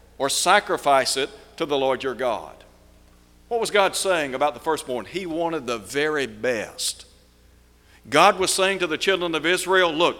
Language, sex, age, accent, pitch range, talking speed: English, male, 60-79, American, 125-180 Hz, 170 wpm